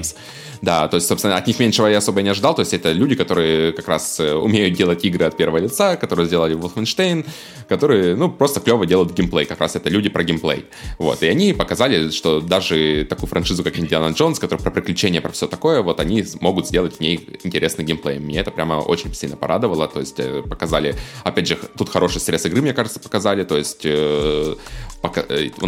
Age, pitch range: 20-39, 80-110 Hz